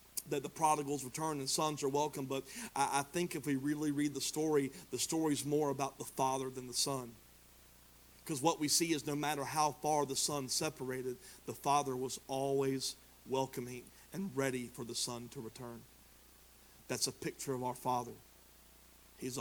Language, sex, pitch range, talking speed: English, male, 120-145 Hz, 175 wpm